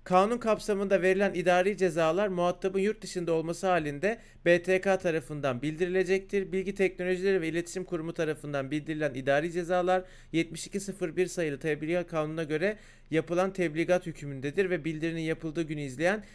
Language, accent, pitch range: Turkish, native, 160-190 Hz